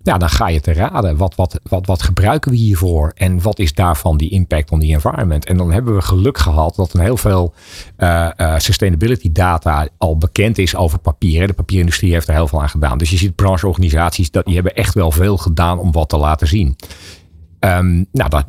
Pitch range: 80-100 Hz